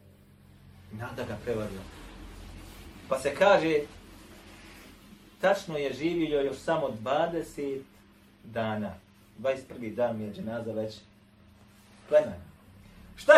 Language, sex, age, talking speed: English, male, 40-59, 90 wpm